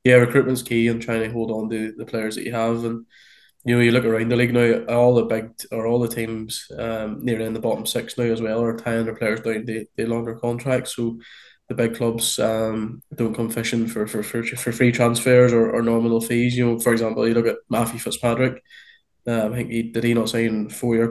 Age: 20-39